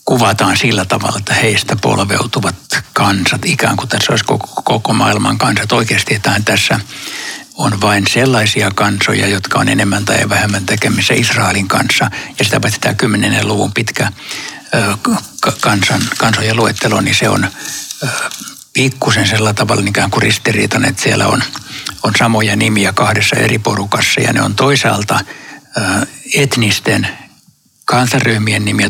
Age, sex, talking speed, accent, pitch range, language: 60-79, male, 135 wpm, native, 105-125 Hz, Finnish